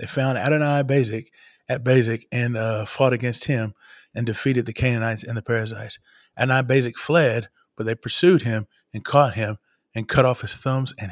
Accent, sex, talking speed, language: American, male, 185 wpm, English